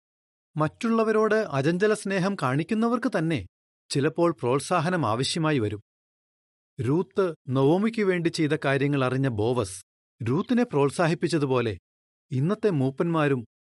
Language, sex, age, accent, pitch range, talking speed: Malayalam, male, 40-59, native, 120-185 Hz, 85 wpm